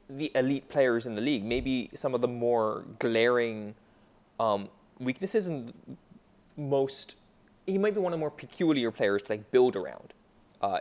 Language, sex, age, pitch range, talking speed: English, male, 20-39, 110-145 Hz, 165 wpm